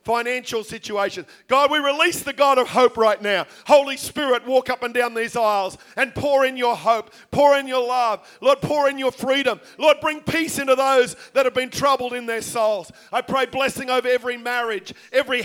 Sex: male